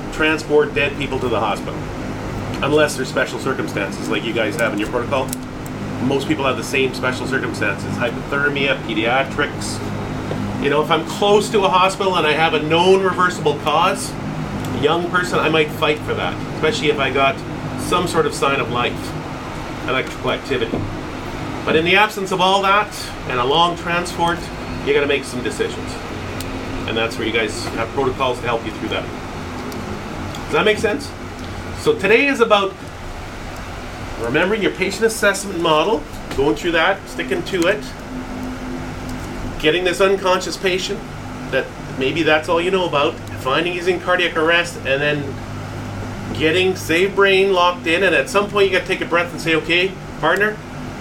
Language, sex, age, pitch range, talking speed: English, male, 40-59, 120-175 Hz, 170 wpm